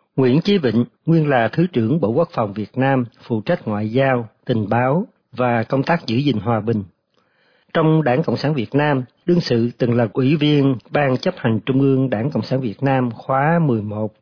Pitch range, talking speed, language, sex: 120-150 Hz, 205 wpm, Vietnamese, male